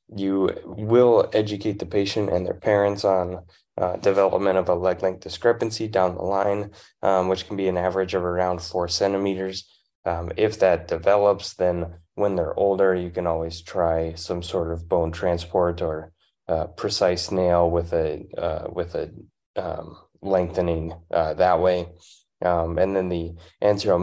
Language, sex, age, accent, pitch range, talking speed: English, male, 20-39, American, 85-100 Hz, 165 wpm